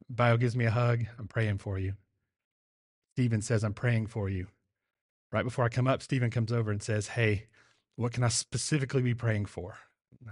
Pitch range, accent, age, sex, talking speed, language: 115-140 Hz, American, 30-49, male, 200 wpm, English